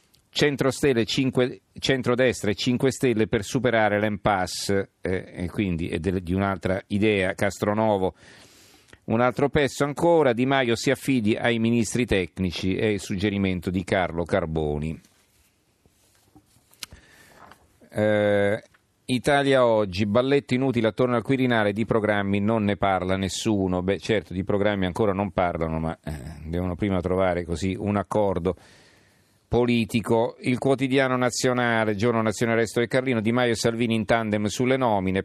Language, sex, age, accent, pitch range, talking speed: Italian, male, 40-59, native, 95-120 Hz, 140 wpm